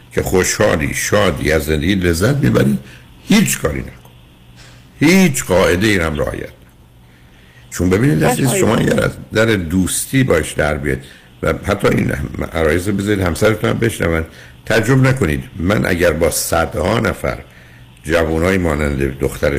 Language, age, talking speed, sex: Persian, 60-79, 140 wpm, male